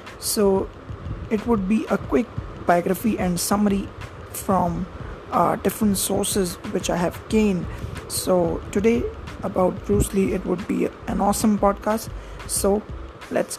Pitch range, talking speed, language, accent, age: 175-210 Hz, 130 wpm, English, Indian, 20-39